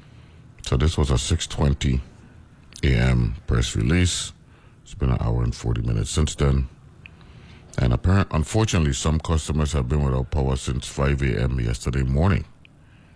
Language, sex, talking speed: English, male, 140 wpm